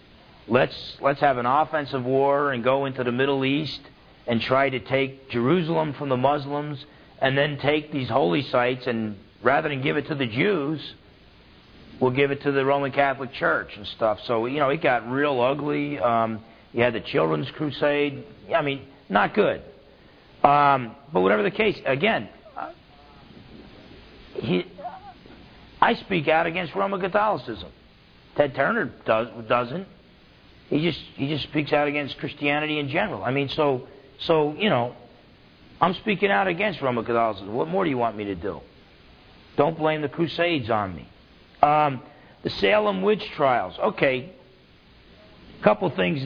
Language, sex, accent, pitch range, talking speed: English, male, American, 125-155 Hz, 160 wpm